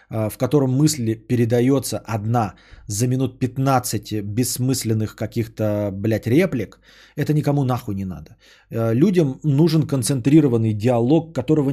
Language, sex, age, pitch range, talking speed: Bulgarian, male, 20-39, 105-145 Hz, 115 wpm